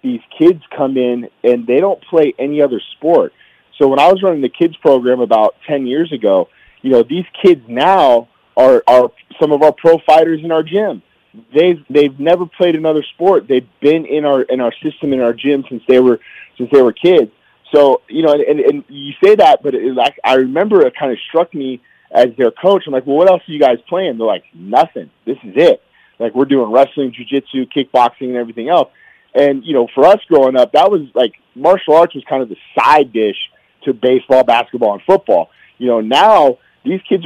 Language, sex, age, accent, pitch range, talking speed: English, male, 30-49, American, 130-180 Hz, 215 wpm